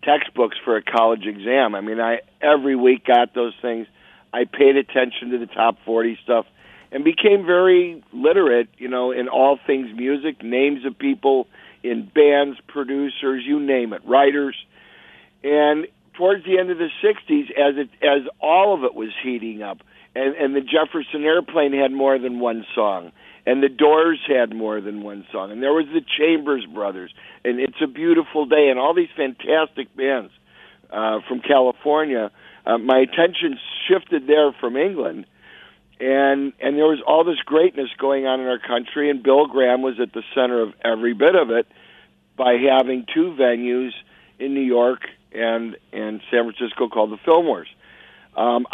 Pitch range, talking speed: 120-150 Hz, 170 wpm